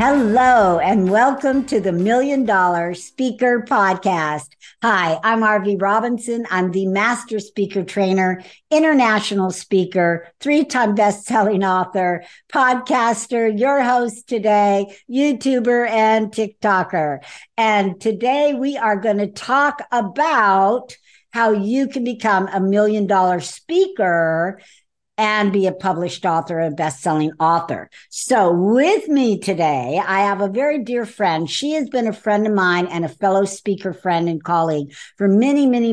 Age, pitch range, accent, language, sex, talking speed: 60-79, 180-245 Hz, American, English, female, 135 wpm